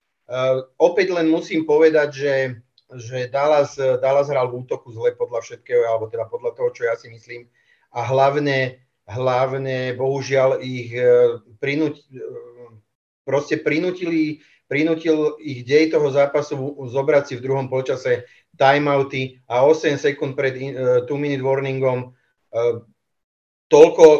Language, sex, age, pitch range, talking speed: Czech, male, 40-59, 125-160 Hz, 120 wpm